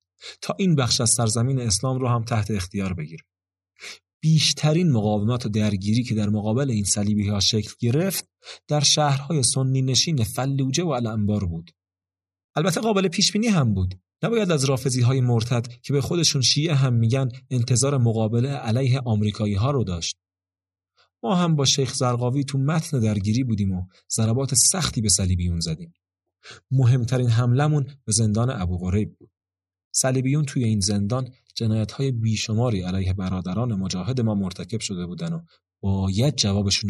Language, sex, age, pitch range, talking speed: Persian, male, 40-59, 100-135 Hz, 145 wpm